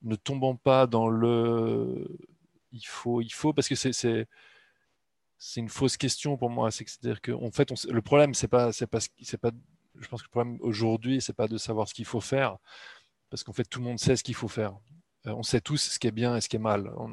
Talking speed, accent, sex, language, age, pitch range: 240 wpm, French, male, French, 20-39, 110-130 Hz